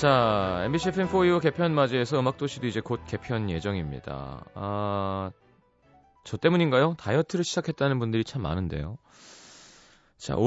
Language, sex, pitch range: Korean, male, 100-150 Hz